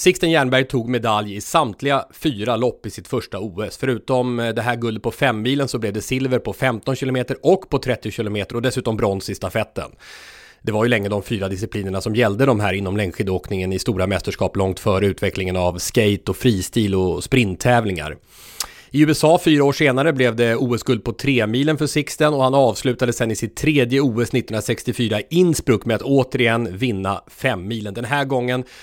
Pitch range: 105-135 Hz